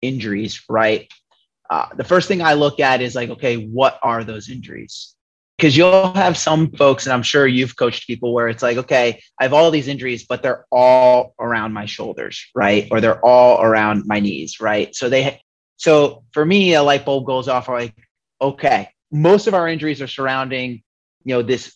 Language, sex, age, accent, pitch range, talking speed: English, male, 30-49, American, 115-140 Hz, 200 wpm